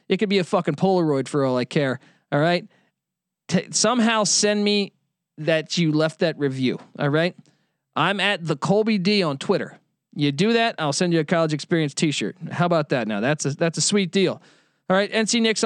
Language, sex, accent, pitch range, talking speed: English, male, American, 145-180 Hz, 205 wpm